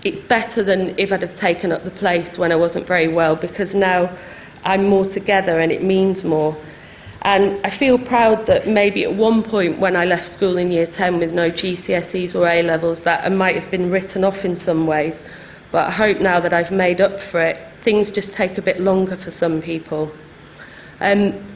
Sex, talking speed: female, 210 wpm